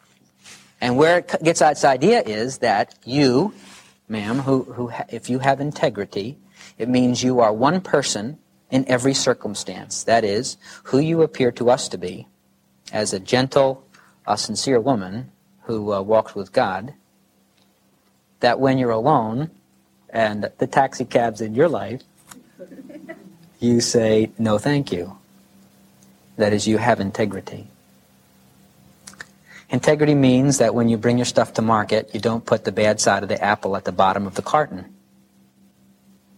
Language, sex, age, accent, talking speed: English, male, 40-59, American, 150 wpm